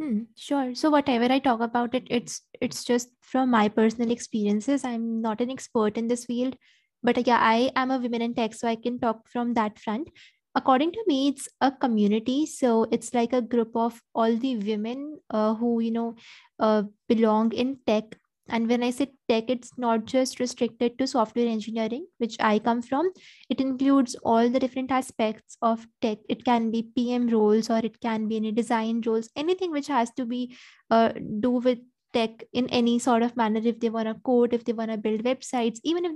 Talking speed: 205 wpm